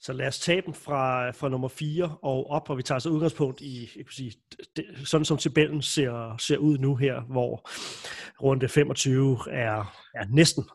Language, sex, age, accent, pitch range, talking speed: Danish, male, 30-49, native, 125-160 Hz, 190 wpm